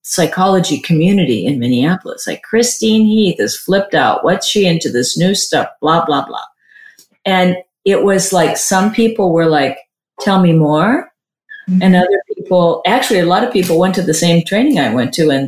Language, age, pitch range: English, 40-59, 165-215 Hz